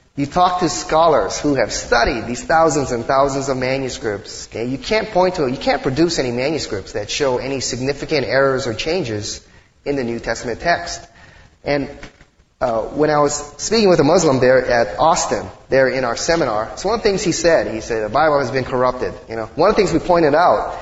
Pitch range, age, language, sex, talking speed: 125-150 Hz, 30-49, English, male, 215 wpm